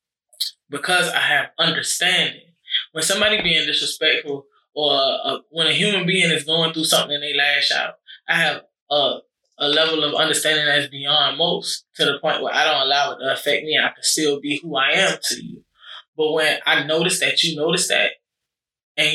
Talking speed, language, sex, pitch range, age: 200 wpm, English, male, 145-165 Hz, 20-39